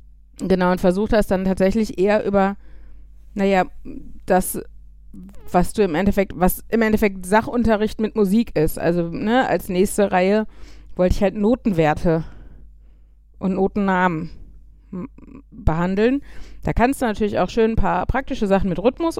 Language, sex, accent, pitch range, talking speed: German, female, German, 185-240 Hz, 140 wpm